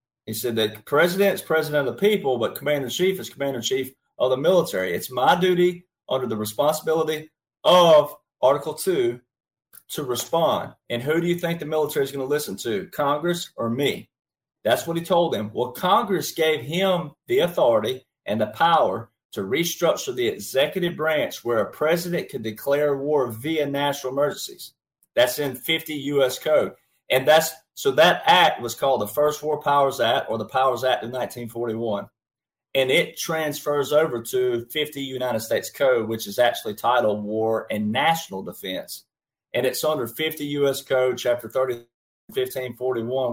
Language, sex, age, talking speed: English, male, 30-49, 170 wpm